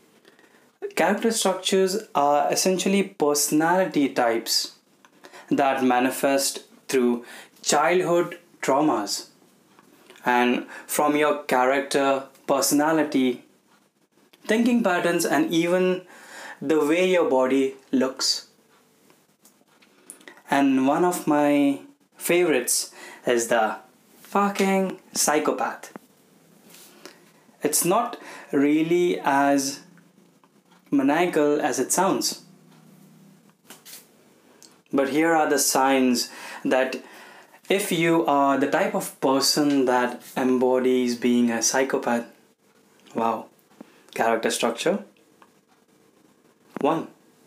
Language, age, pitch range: Hindi, 20-39, 135-185 Hz